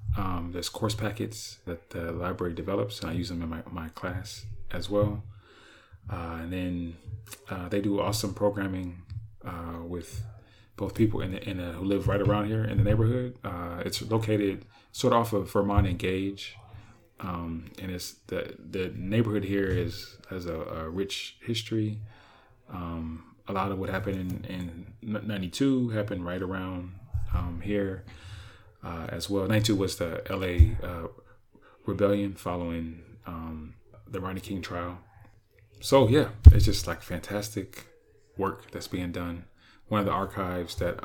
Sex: male